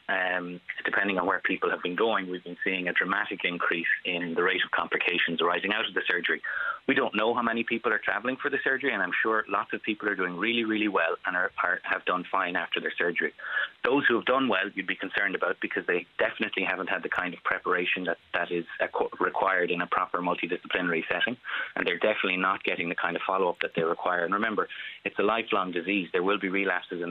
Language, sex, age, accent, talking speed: English, male, 30-49, Irish, 230 wpm